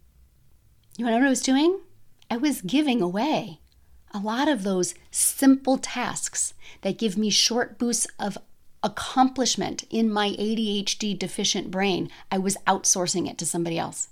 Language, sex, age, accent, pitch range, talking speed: English, female, 30-49, American, 180-255 Hz, 150 wpm